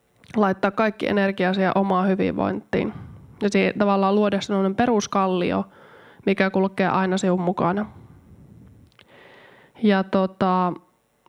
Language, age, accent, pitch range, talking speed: Finnish, 20-39, native, 185-205 Hz, 100 wpm